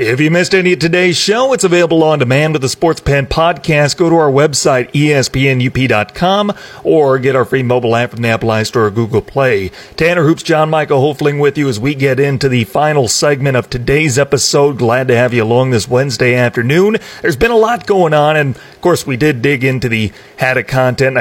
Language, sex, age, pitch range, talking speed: English, male, 40-59, 120-150 Hz, 210 wpm